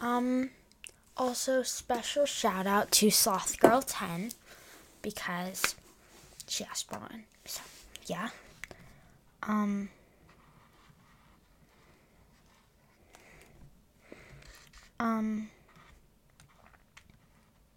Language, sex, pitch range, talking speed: English, female, 215-280 Hz, 60 wpm